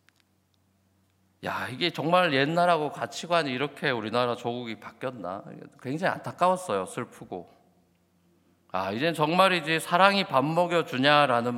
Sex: male